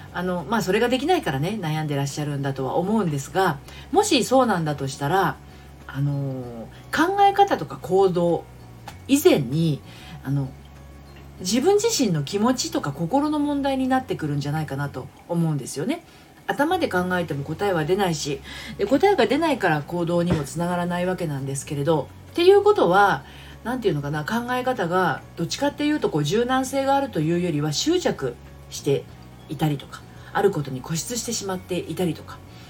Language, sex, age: Japanese, female, 40-59